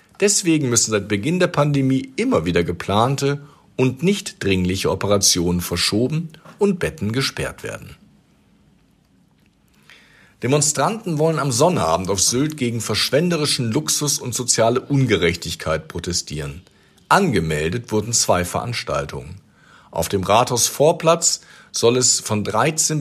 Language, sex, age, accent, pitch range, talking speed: German, male, 50-69, German, 100-145 Hz, 110 wpm